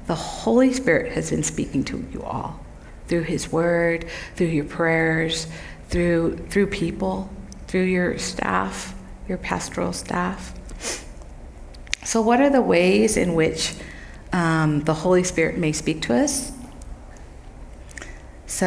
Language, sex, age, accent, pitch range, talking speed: English, female, 50-69, American, 160-185 Hz, 130 wpm